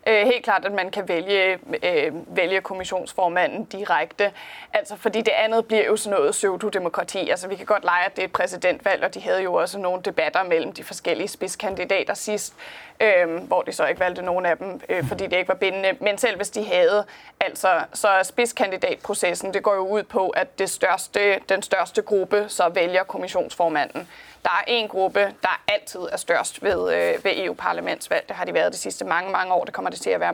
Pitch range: 185-230 Hz